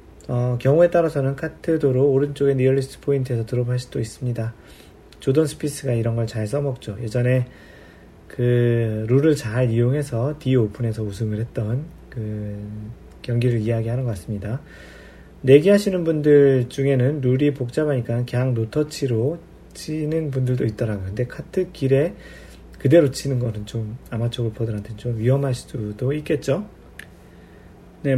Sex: male